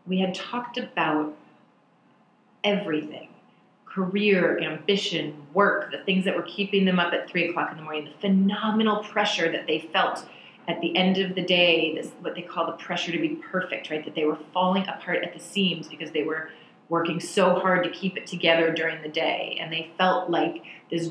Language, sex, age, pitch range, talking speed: English, female, 30-49, 155-185 Hz, 195 wpm